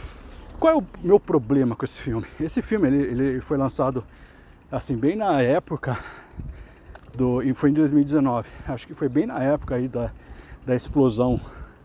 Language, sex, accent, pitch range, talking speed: Portuguese, male, Brazilian, 120-155 Hz, 160 wpm